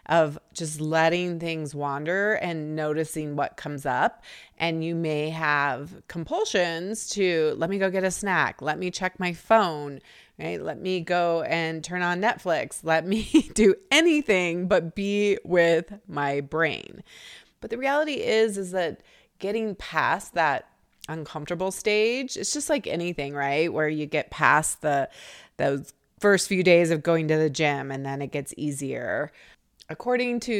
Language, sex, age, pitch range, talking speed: English, female, 30-49, 150-190 Hz, 160 wpm